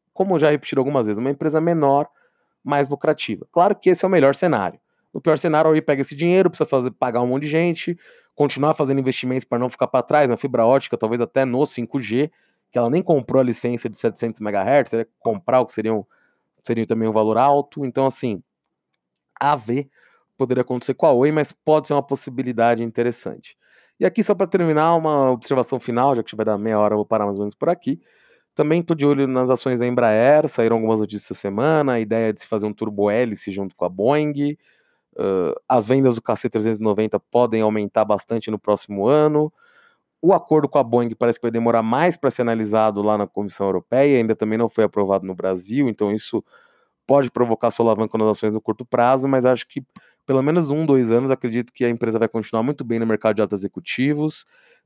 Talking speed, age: 215 wpm, 30-49